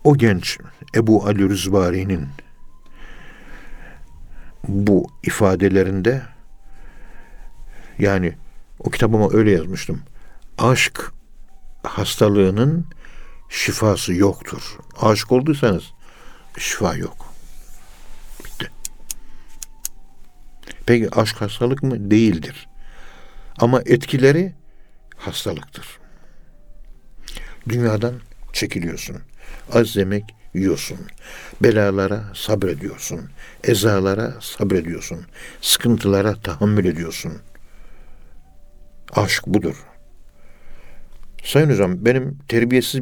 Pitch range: 80-120 Hz